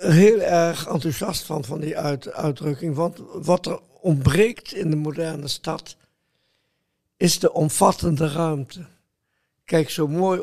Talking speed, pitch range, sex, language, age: 125 wpm, 145-170 Hz, male, Dutch, 60-79